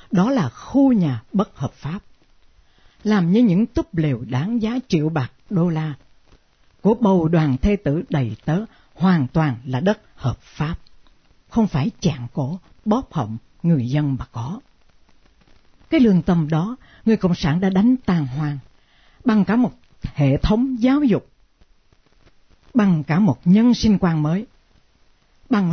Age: 60-79